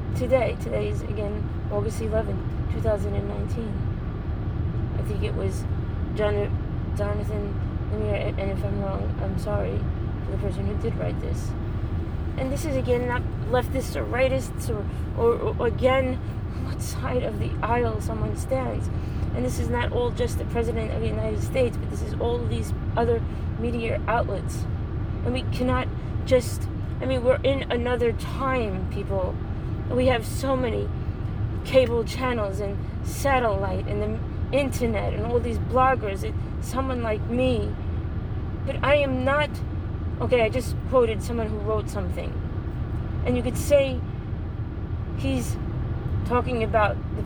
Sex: female